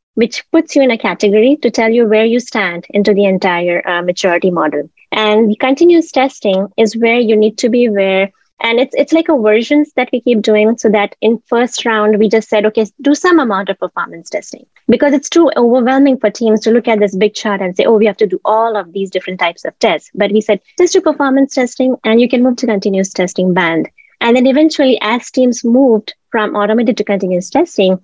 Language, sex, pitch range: English, female, 205-250 Hz